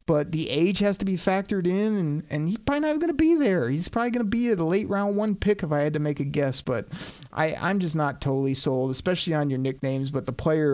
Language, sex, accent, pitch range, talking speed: English, male, American, 135-165 Hz, 265 wpm